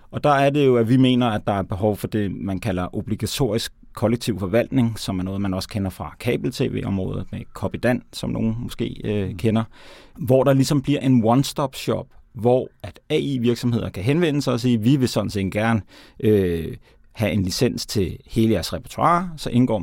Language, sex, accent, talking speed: Danish, male, native, 195 wpm